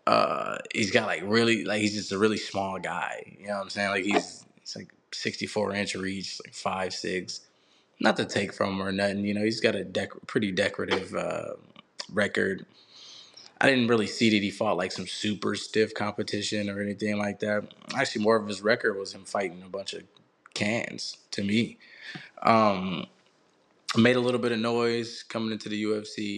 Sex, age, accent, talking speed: male, 20-39, American, 195 wpm